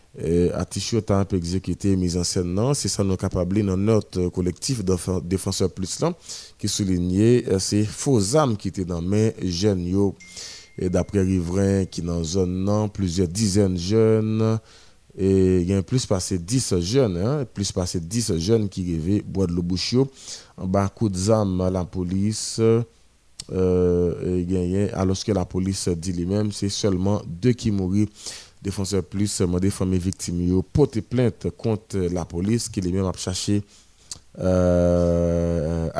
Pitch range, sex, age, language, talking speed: 90-105 Hz, male, 30-49, French, 140 wpm